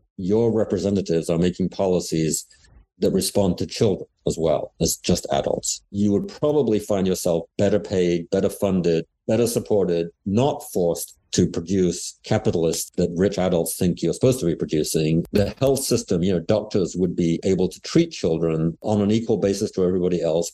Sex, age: male, 50-69